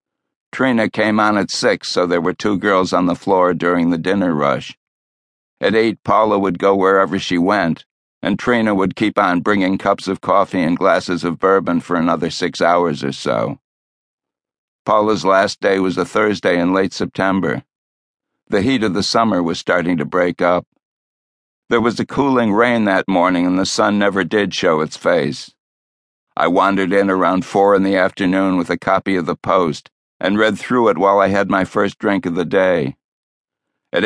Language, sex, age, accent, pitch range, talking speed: English, male, 60-79, American, 90-105 Hz, 185 wpm